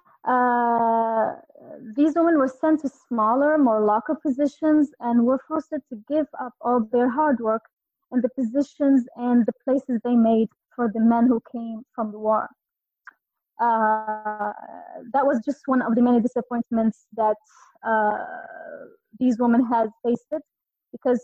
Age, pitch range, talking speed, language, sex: 20-39, 230-265 Hz, 145 wpm, English, female